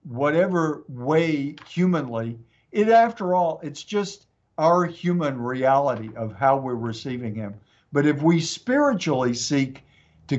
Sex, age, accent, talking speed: male, 60-79, American, 125 wpm